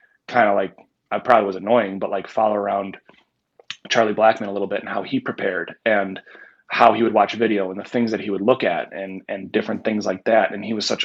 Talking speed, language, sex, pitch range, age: 240 wpm, English, male, 100-115 Hz, 30-49